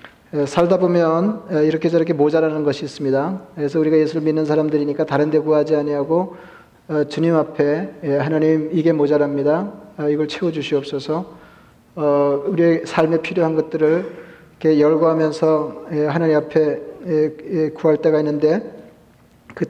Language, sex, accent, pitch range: Korean, male, native, 150-165 Hz